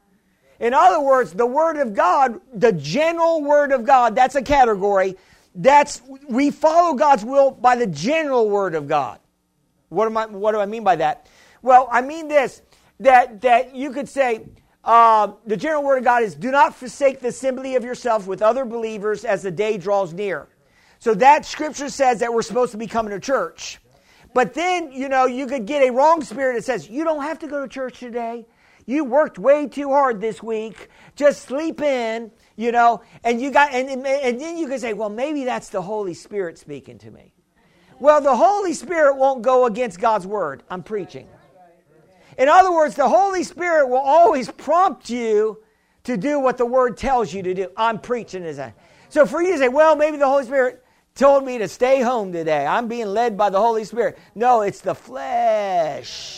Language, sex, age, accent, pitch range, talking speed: English, male, 50-69, American, 215-280 Hz, 200 wpm